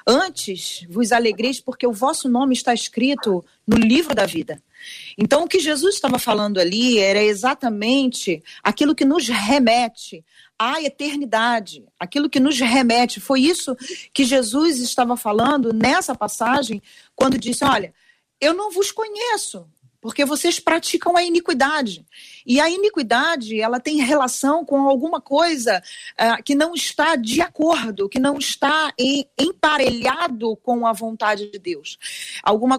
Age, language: 40-59, Portuguese